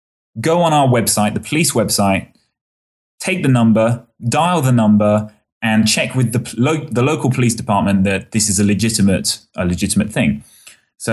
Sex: male